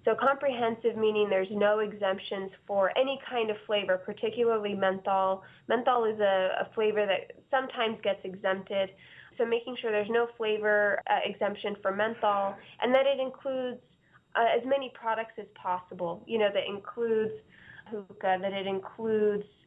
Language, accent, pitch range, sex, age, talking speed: English, American, 200-235 Hz, female, 20-39, 155 wpm